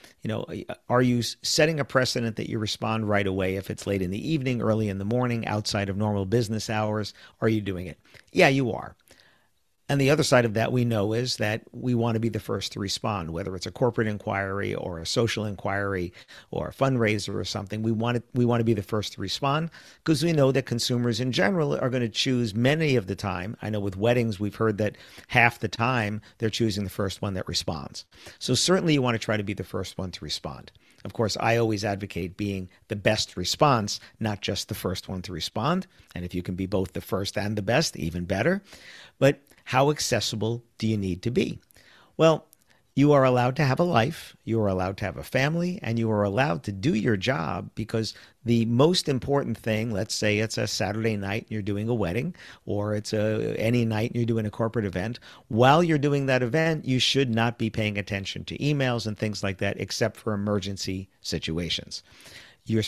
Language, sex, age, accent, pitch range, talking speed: English, male, 50-69, American, 100-125 Hz, 215 wpm